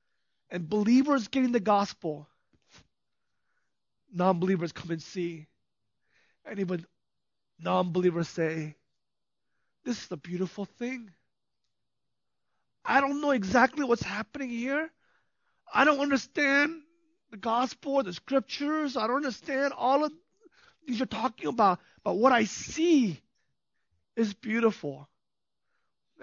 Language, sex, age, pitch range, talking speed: English, male, 30-49, 180-250 Hz, 110 wpm